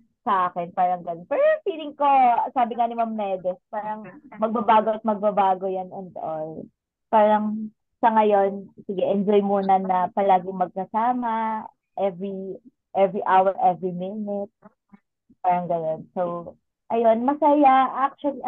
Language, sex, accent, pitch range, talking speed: Filipino, female, native, 190-250 Hz, 125 wpm